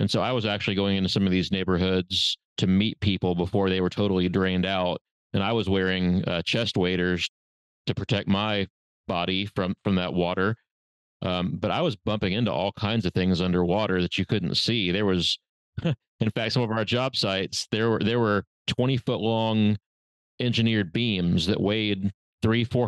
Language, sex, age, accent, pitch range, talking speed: English, male, 30-49, American, 95-115 Hz, 190 wpm